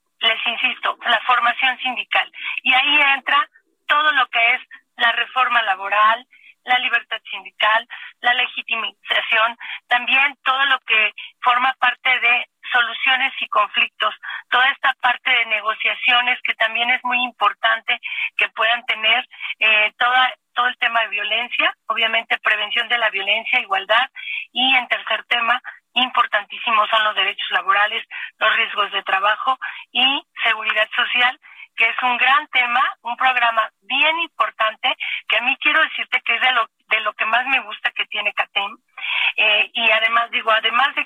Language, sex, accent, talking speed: Spanish, female, Mexican, 155 wpm